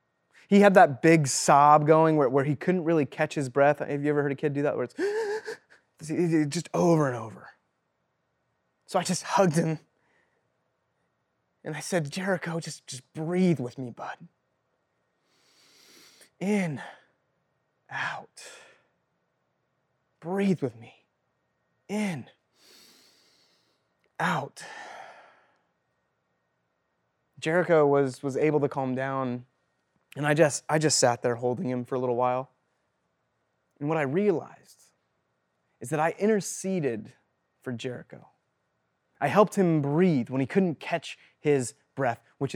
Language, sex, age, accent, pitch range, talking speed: English, male, 20-39, American, 140-190 Hz, 130 wpm